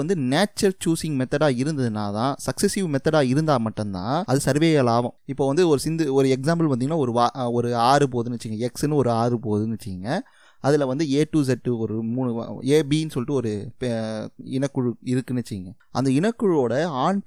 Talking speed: 110 wpm